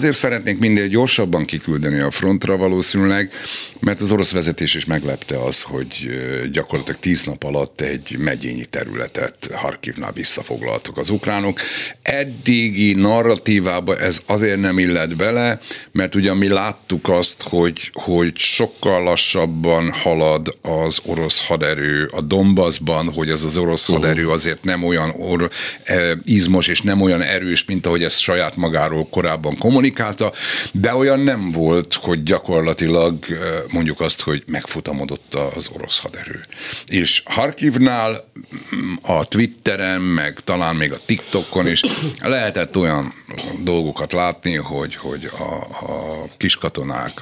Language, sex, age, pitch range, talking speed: Hungarian, male, 60-79, 80-100 Hz, 130 wpm